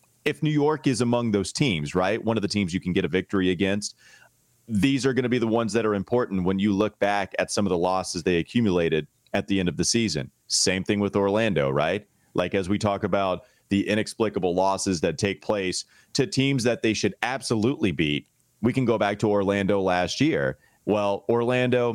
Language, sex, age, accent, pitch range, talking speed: English, male, 30-49, American, 95-120 Hz, 215 wpm